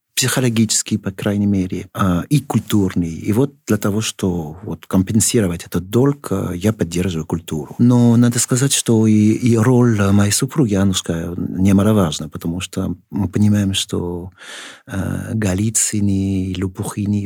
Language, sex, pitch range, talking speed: Russian, male, 90-110 Hz, 130 wpm